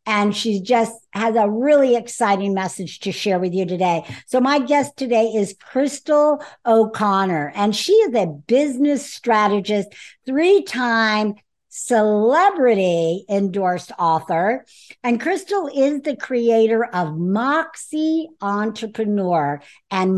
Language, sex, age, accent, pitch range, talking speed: English, female, 60-79, American, 200-285 Hz, 115 wpm